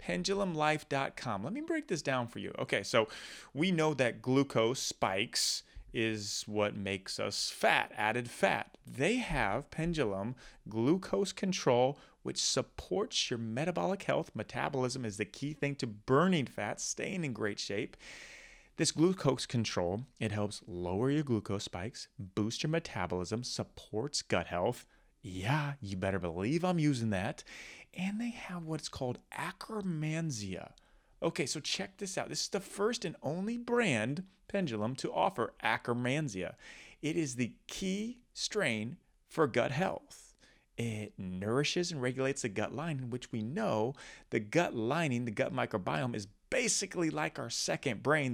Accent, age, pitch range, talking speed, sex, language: American, 30-49, 110-170 Hz, 145 wpm, male, English